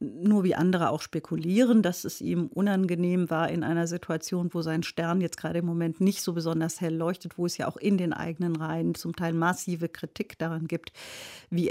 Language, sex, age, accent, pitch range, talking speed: German, female, 50-69, German, 165-195 Hz, 205 wpm